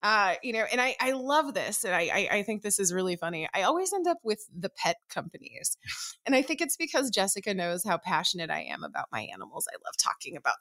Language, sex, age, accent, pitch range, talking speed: English, female, 20-39, American, 185-260 Hz, 240 wpm